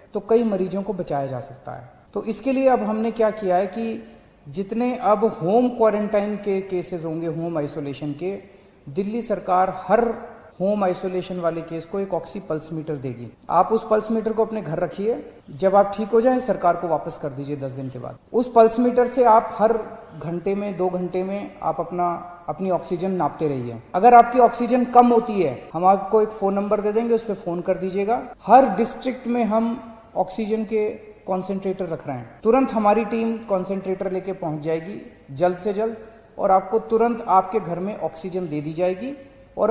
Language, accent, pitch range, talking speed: Hindi, native, 180-225 Hz, 195 wpm